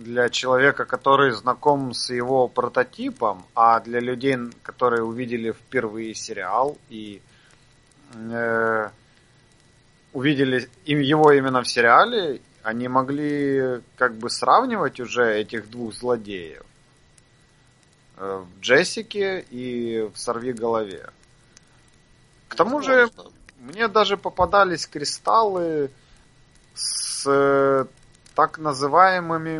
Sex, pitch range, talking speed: male, 115-150 Hz, 95 wpm